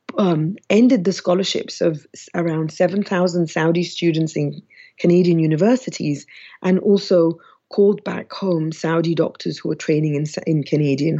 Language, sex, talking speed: English, female, 135 wpm